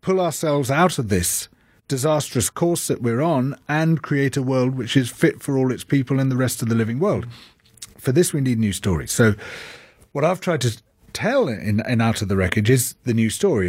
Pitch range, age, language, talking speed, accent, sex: 115-150 Hz, 40-59, English, 220 wpm, British, male